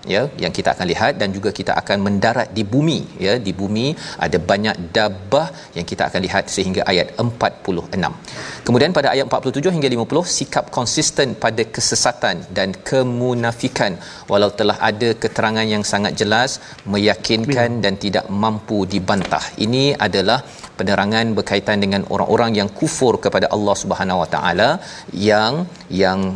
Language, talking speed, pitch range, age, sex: Malayalam, 145 wpm, 100-130 Hz, 40-59, male